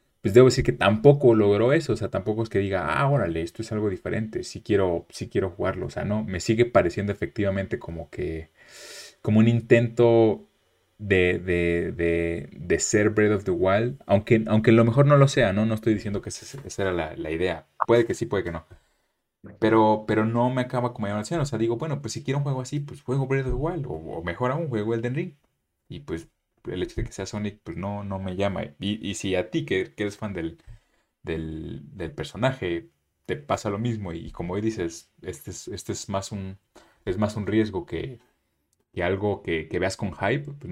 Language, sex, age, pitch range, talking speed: Spanish, male, 30-49, 95-120 Hz, 225 wpm